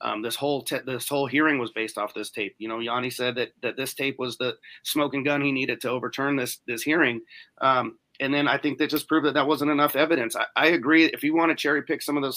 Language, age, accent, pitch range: English, 30-49, American, 130-150 Hz